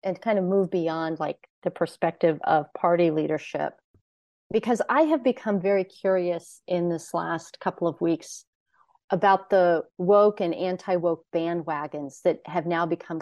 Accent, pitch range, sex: American, 160-195 Hz, female